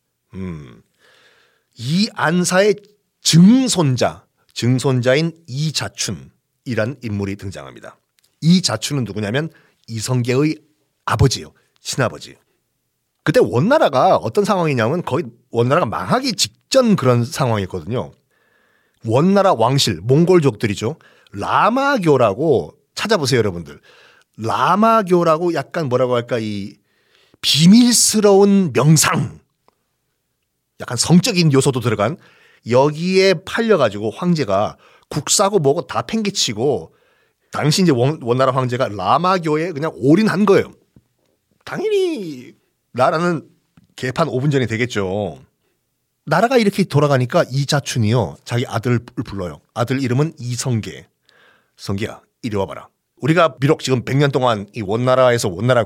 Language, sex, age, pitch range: Korean, male, 40-59, 120-175 Hz